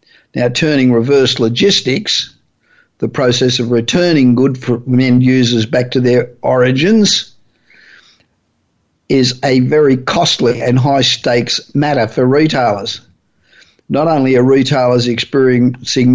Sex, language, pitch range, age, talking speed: male, English, 125-140 Hz, 50-69, 110 wpm